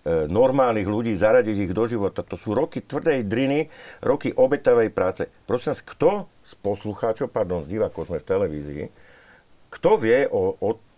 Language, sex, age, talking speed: Slovak, male, 50-69, 160 wpm